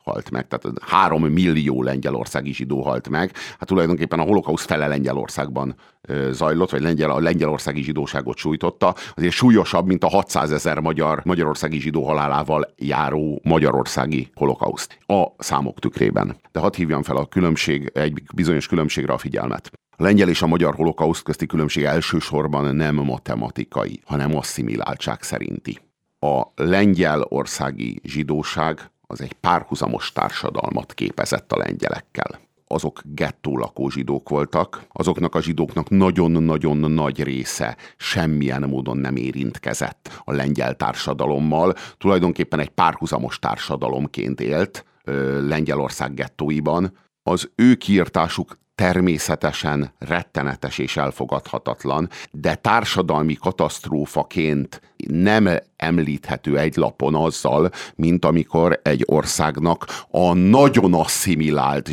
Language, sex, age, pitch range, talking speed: Hungarian, male, 50-69, 70-85 Hz, 115 wpm